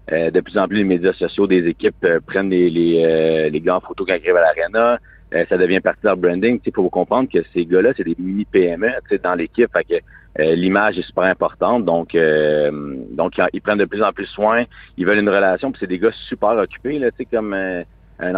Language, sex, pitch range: French, male, 85-115 Hz